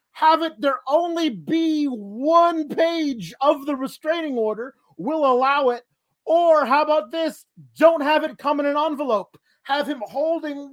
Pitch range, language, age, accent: 205-295 Hz, English, 40-59, American